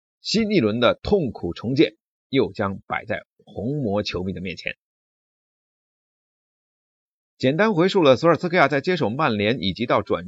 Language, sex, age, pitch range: Chinese, male, 30-49, 100-165 Hz